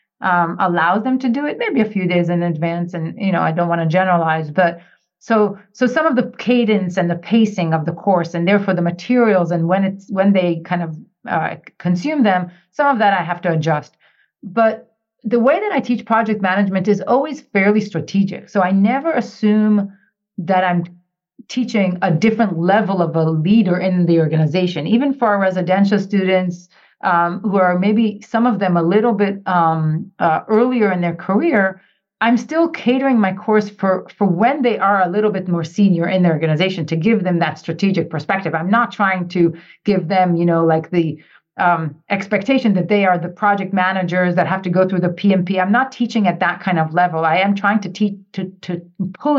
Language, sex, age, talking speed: English, female, 40-59, 200 wpm